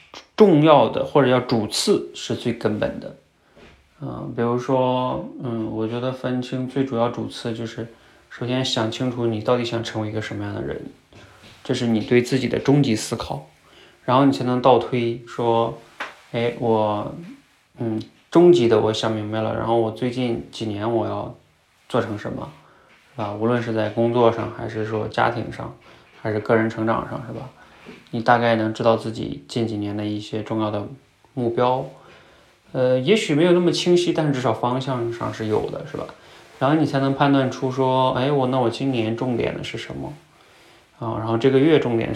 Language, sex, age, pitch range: Chinese, male, 20-39, 110-130 Hz